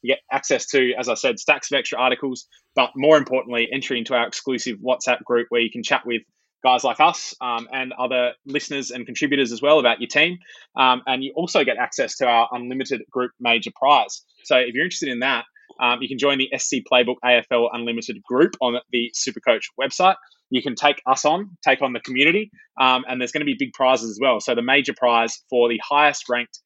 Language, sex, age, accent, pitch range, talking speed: English, male, 20-39, Australian, 120-140 Hz, 215 wpm